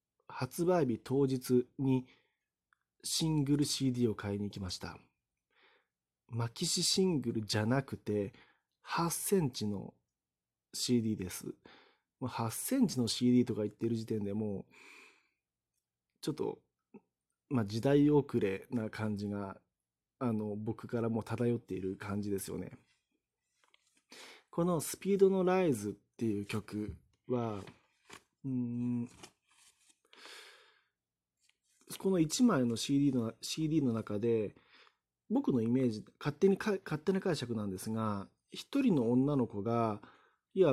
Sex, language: male, Japanese